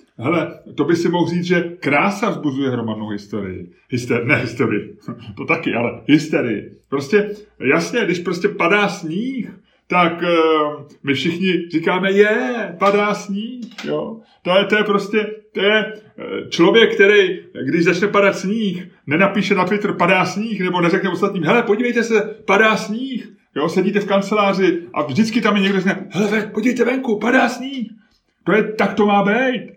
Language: Czech